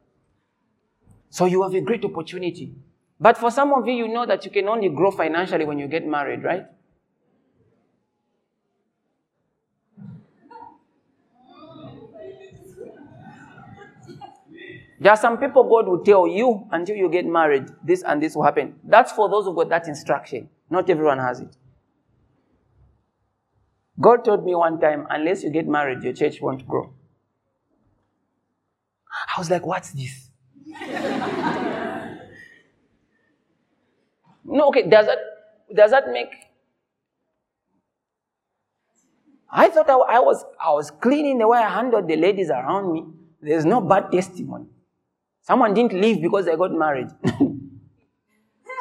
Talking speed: 125 wpm